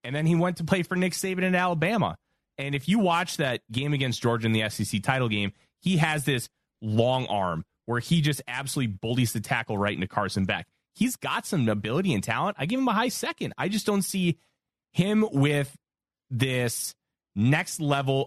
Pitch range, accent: 110-155 Hz, American